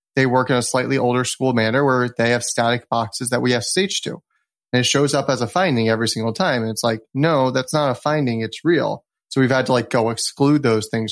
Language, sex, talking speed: English, male, 255 wpm